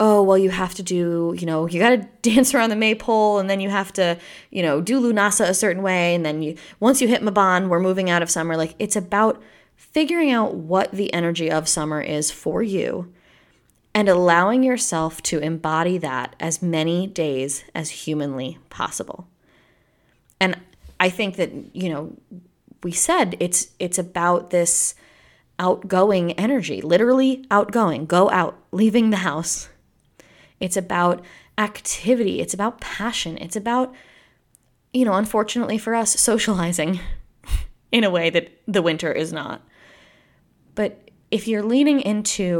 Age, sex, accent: 20-39, female, American